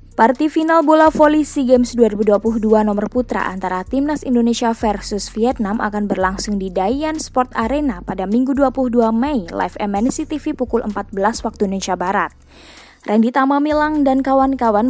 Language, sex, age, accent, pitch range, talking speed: Indonesian, female, 20-39, native, 205-275 Hz, 150 wpm